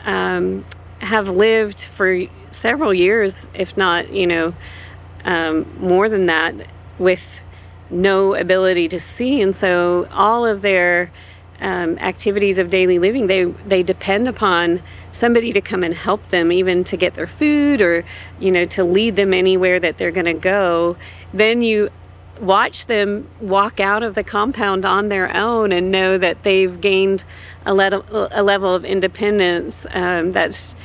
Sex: female